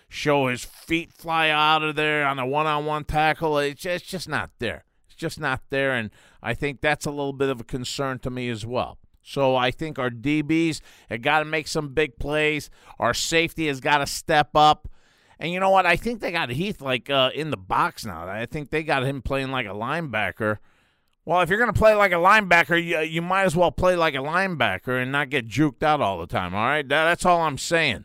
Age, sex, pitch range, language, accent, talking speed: 50-69, male, 110-155 Hz, English, American, 235 wpm